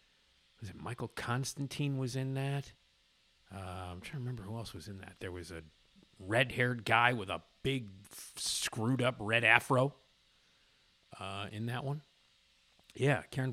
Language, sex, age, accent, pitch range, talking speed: English, male, 50-69, American, 105-155 Hz, 155 wpm